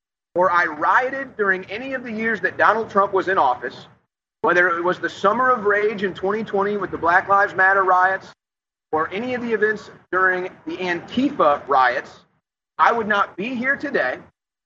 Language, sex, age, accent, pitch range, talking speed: English, male, 30-49, American, 185-245 Hz, 180 wpm